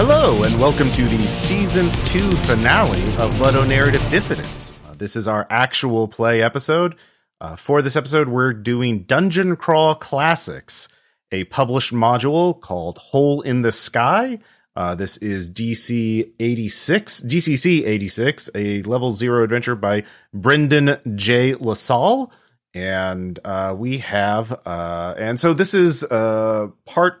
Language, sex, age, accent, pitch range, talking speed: English, male, 30-49, American, 100-135 Hz, 135 wpm